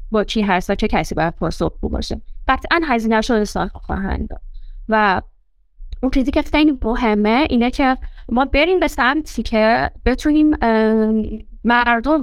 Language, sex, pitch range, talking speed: Persian, female, 205-250 Hz, 145 wpm